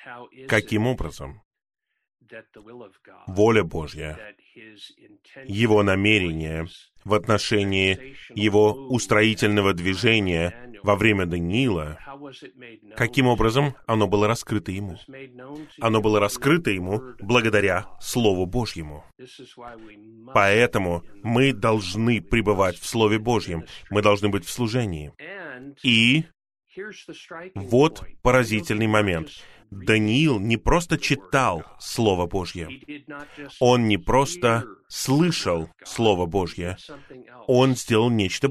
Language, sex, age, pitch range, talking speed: Russian, male, 30-49, 100-130 Hz, 90 wpm